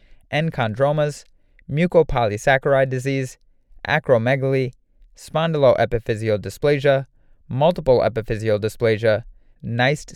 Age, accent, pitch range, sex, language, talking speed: 30-49, American, 115-150 Hz, male, English, 60 wpm